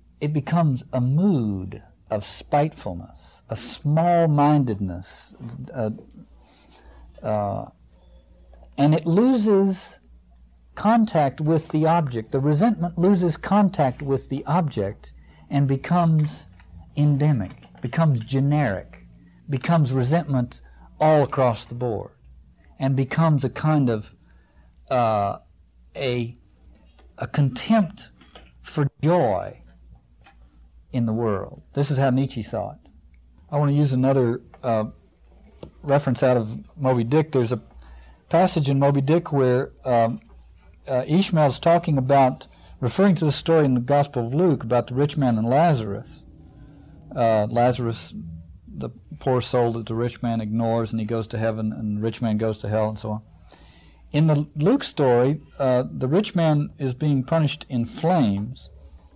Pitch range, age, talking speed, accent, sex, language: 90-150 Hz, 60-79, 135 wpm, American, male, English